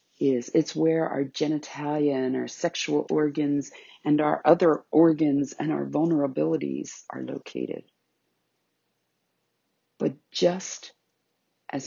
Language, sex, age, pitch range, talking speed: English, female, 50-69, 130-160 Hz, 105 wpm